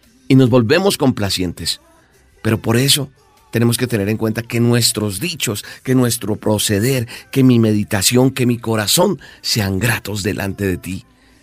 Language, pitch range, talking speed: Spanish, 95-120 Hz, 150 wpm